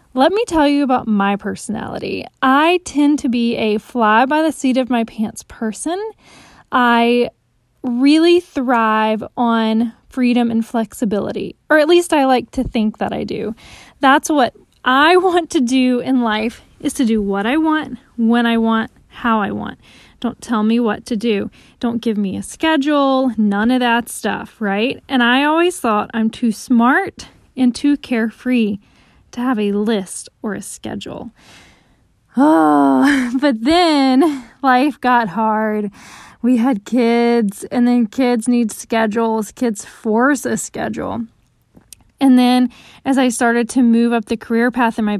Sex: female